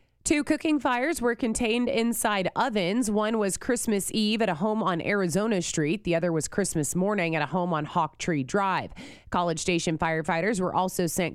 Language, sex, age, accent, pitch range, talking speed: English, female, 30-49, American, 170-215 Hz, 185 wpm